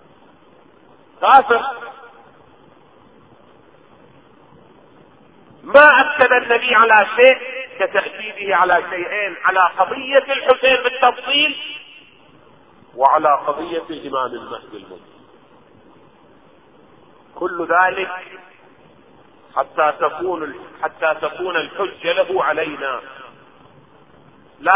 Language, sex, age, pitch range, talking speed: Arabic, male, 40-59, 195-270 Hz, 65 wpm